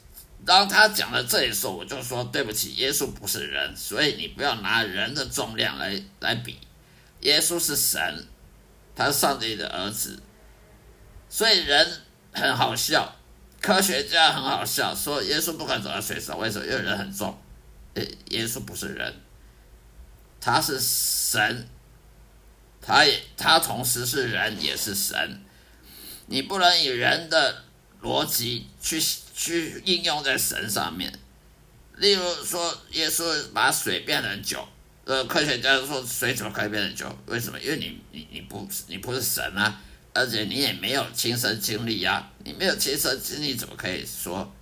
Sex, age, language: male, 50-69, Chinese